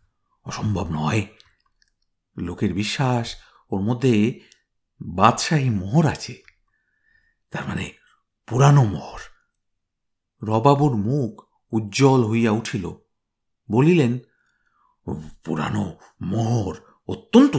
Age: 50-69